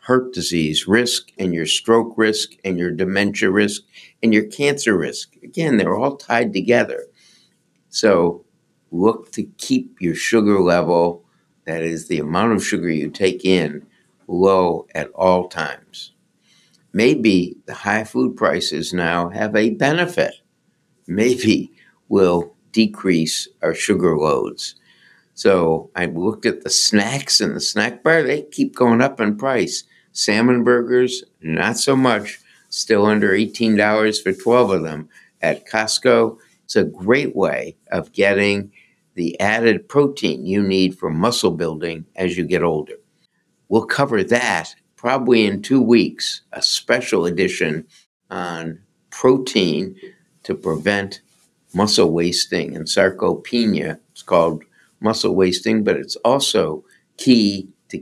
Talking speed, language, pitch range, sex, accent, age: 135 wpm, English, 90-115 Hz, male, American, 60-79